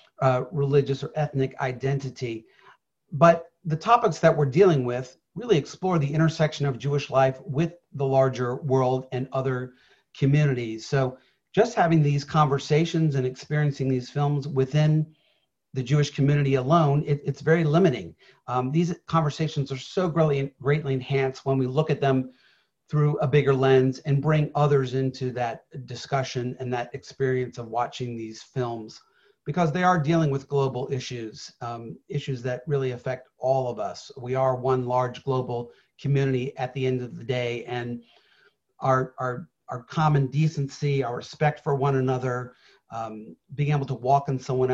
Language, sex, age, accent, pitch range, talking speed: English, male, 40-59, American, 130-145 Hz, 155 wpm